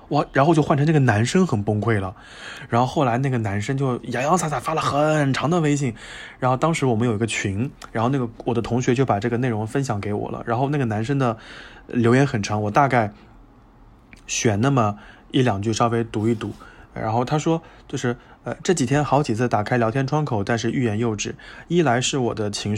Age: 20-39